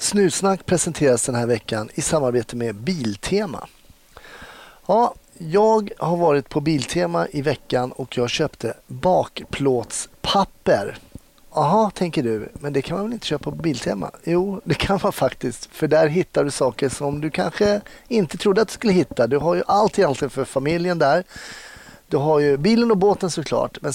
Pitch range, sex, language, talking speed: 130-185 Hz, male, Swedish, 170 wpm